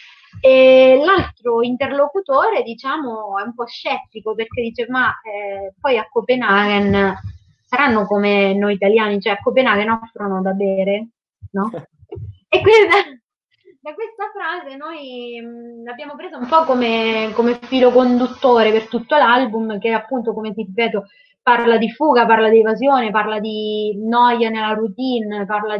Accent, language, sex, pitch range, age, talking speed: native, Italian, female, 210-270 Hz, 20-39, 145 wpm